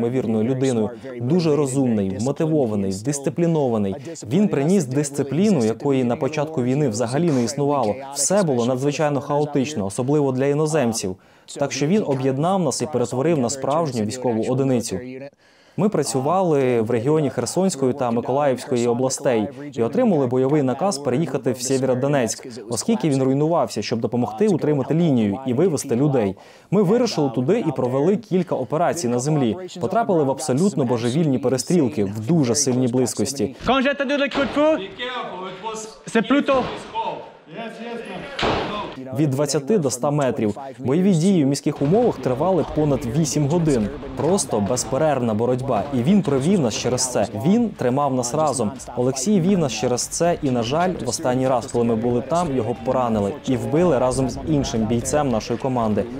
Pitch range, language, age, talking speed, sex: 120-165 Hz, Russian, 20-39, 140 wpm, male